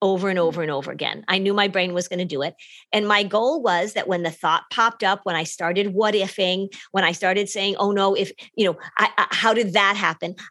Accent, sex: American, female